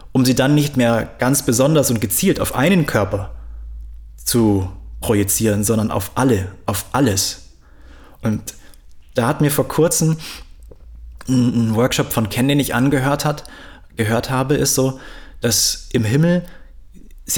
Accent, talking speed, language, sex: German, 140 wpm, German, male